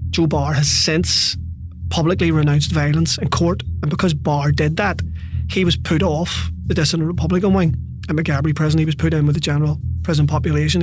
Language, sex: English, male